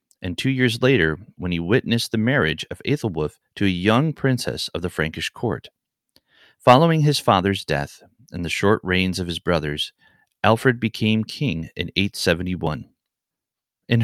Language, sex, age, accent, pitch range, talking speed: English, male, 30-49, American, 85-115 Hz, 155 wpm